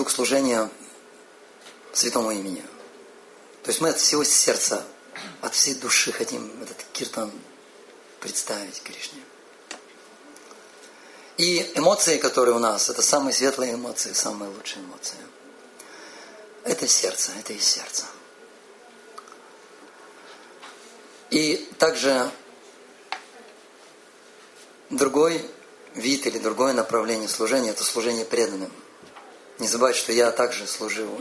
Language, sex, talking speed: Russian, male, 100 wpm